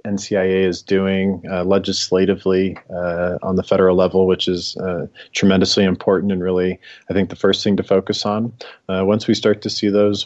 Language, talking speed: English, 185 wpm